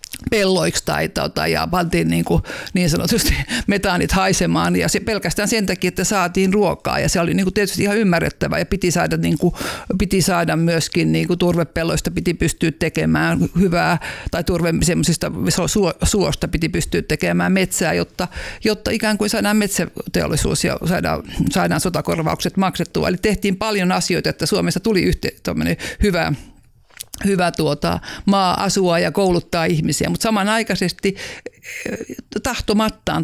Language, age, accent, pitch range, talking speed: Finnish, 50-69, native, 155-195 Hz, 130 wpm